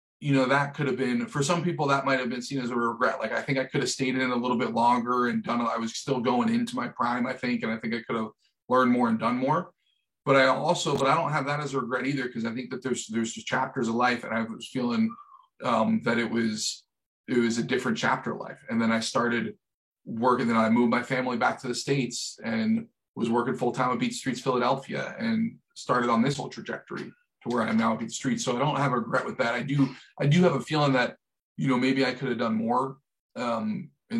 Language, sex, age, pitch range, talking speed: English, male, 30-49, 120-165 Hz, 265 wpm